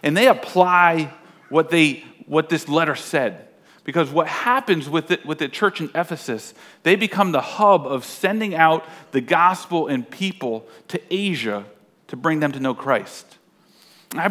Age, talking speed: 40-59, 170 wpm